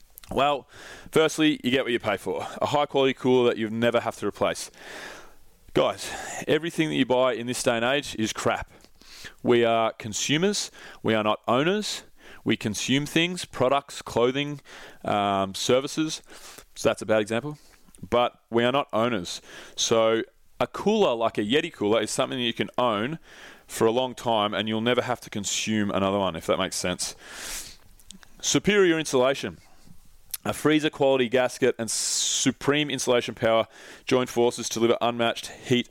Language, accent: English, Australian